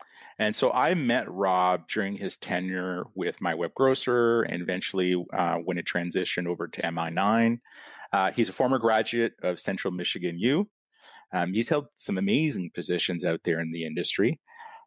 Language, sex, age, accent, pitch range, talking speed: English, male, 30-49, American, 90-115 Hz, 160 wpm